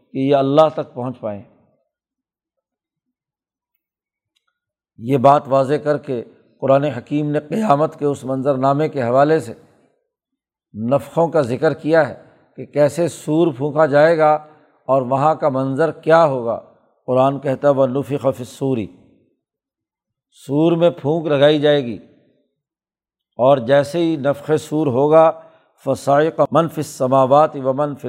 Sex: male